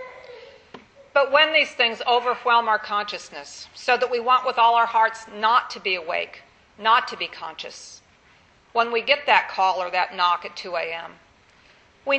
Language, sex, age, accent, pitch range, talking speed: English, female, 50-69, American, 215-265 Hz, 170 wpm